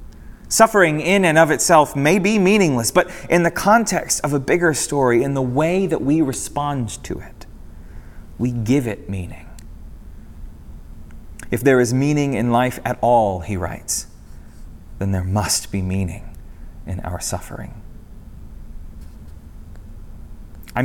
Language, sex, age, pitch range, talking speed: English, male, 30-49, 95-135 Hz, 135 wpm